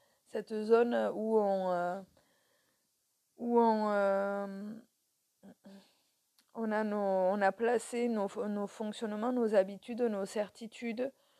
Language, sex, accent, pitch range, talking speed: French, female, French, 200-245 Hz, 110 wpm